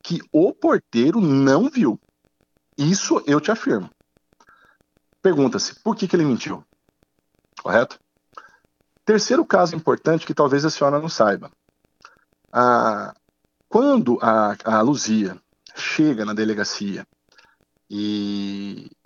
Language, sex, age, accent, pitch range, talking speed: Portuguese, male, 50-69, Brazilian, 105-170 Hz, 105 wpm